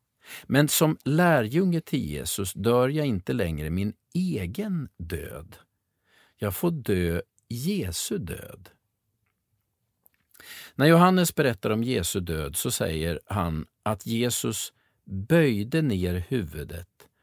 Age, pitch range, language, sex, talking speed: 50-69, 90-135 Hz, Swedish, male, 110 wpm